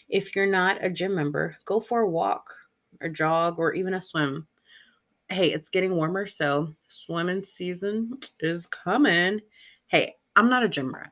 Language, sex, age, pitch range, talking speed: English, female, 20-39, 155-195 Hz, 165 wpm